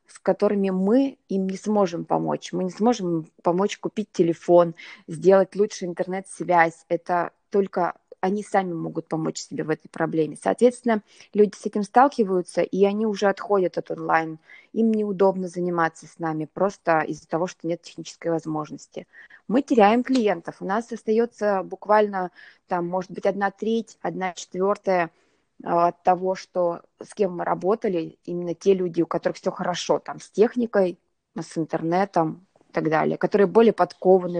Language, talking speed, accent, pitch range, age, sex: Russian, 150 wpm, native, 170-205 Hz, 20-39, female